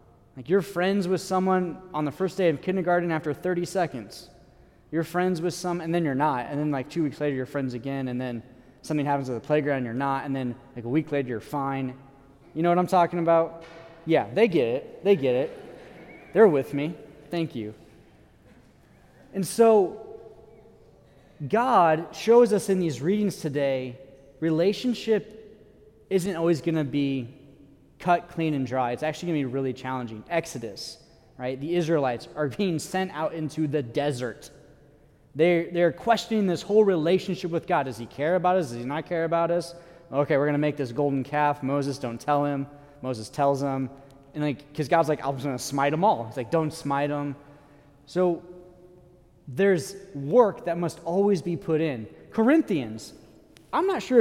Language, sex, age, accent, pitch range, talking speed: English, male, 20-39, American, 140-180 Hz, 185 wpm